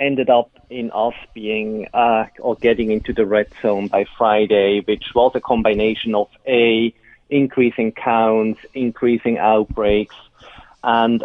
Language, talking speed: English, 135 wpm